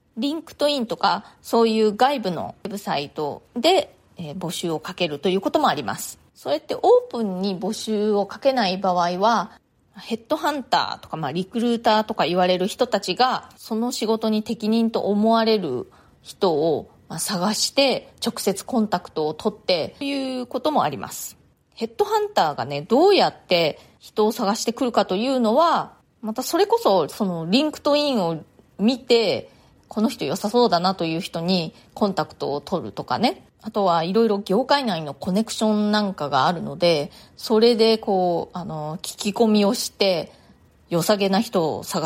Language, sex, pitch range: Japanese, female, 180-240 Hz